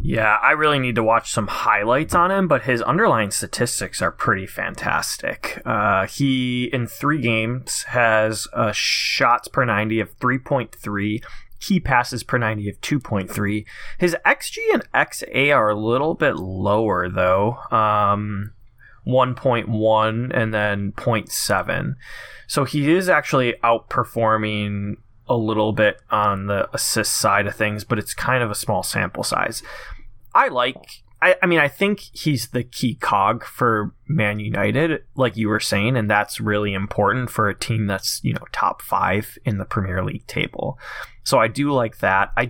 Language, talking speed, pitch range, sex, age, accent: English, 160 wpm, 100-125 Hz, male, 20-39, American